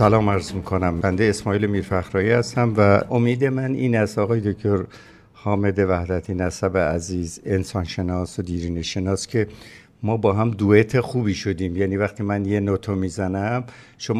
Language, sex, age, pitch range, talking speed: Persian, male, 60-79, 100-125 Hz, 150 wpm